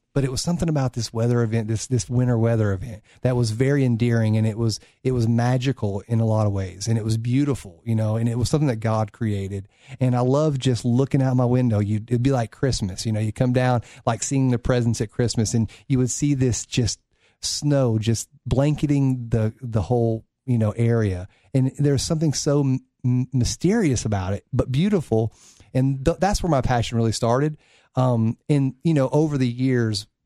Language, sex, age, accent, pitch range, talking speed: English, male, 30-49, American, 110-135 Hz, 200 wpm